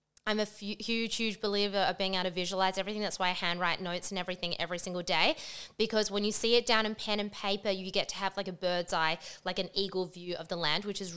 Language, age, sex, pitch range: English, 20-39, female, 175-210 Hz